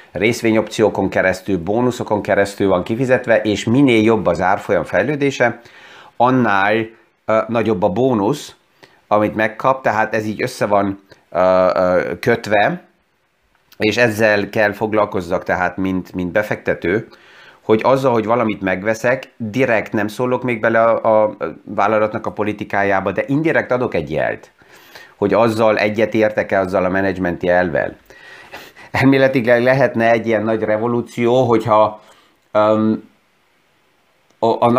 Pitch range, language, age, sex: 105-125 Hz, Hungarian, 30-49, male